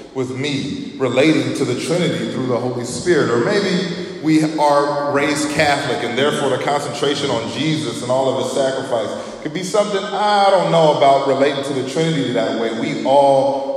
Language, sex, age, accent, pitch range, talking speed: English, male, 20-39, American, 120-185 Hz, 185 wpm